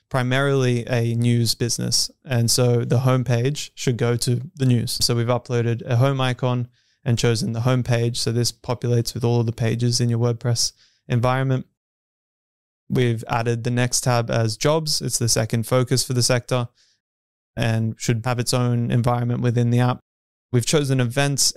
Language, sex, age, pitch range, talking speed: English, male, 20-39, 115-130 Hz, 175 wpm